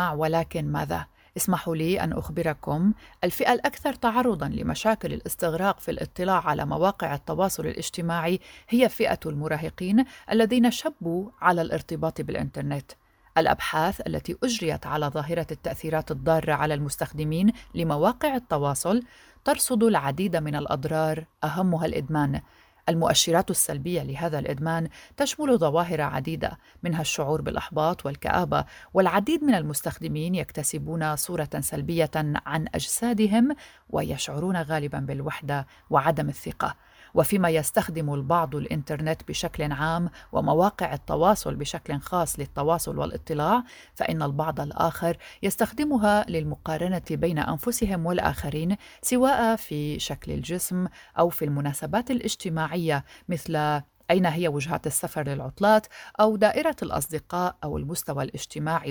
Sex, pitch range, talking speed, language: female, 155-195 Hz, 110 wpm, Arabic